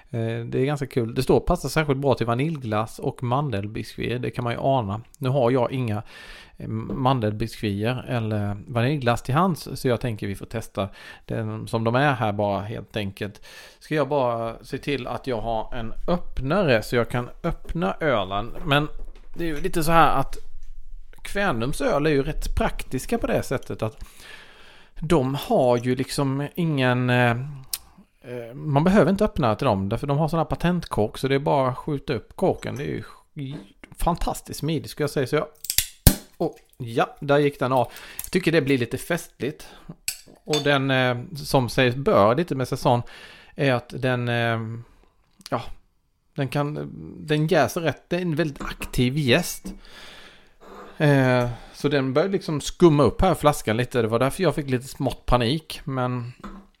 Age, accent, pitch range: 40-59, Norwegian, 115-150 Hz